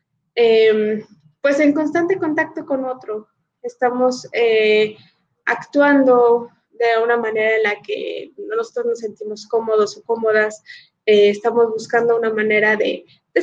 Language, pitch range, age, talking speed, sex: Spanish, 215-260 Hz, 20-39, 130 wpm, female